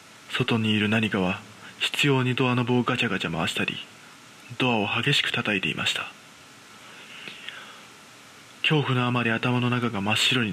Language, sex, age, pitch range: Japanese, male, 20-39, 100-130 Hz